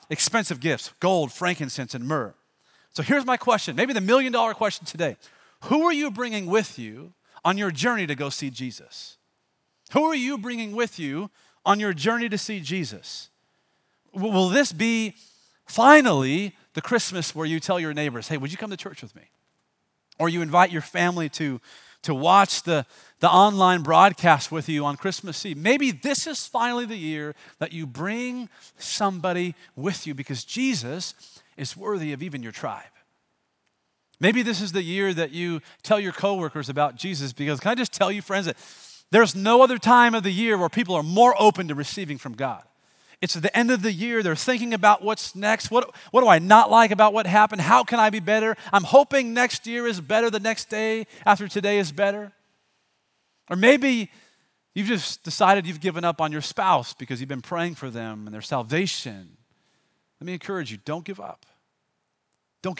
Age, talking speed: 40-59, 190 wpm